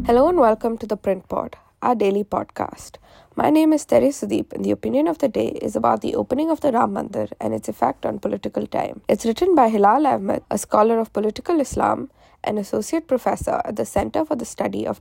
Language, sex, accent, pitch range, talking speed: English, female, Indian, 195-290 Hz, 220 wpm